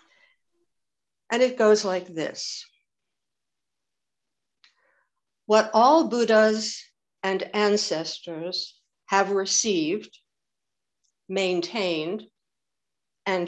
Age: 60-79